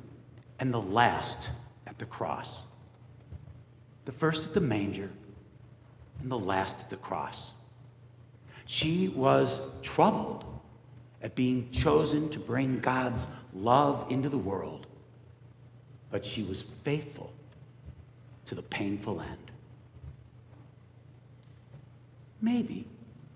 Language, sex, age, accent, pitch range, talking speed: English, male, 60-79, American, 115-130 Hz, 100 wpm